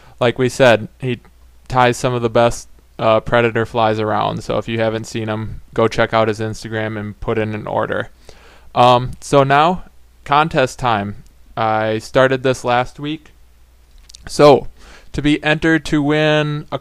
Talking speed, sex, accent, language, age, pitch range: 165 wpm, male, American, English, 20-39, 110-135 Hz